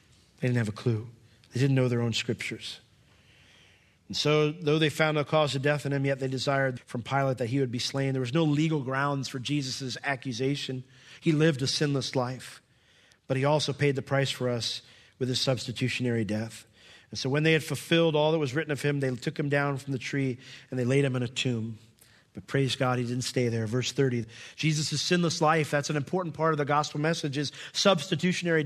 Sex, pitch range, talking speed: male, 130-155 Hz, 220 wpm